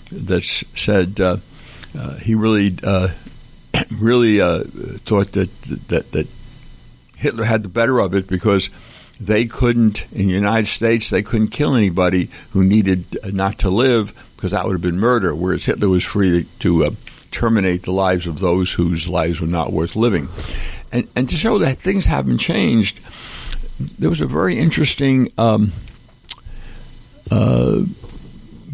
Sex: male